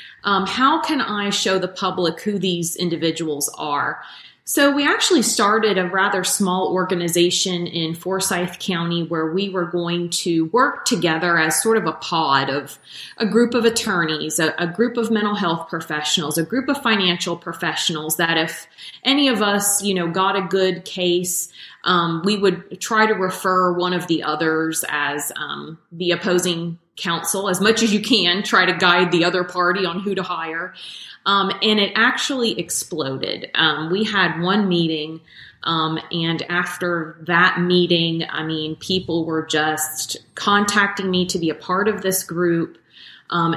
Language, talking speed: English, 170 wpm